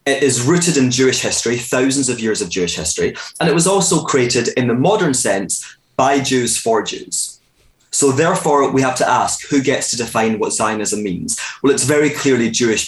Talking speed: 200 wpm